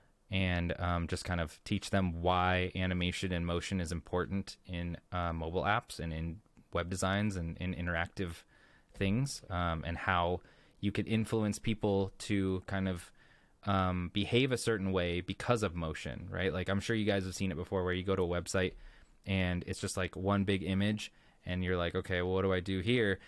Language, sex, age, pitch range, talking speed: English, male, 20-39, 90-100 Hz, 195 wpm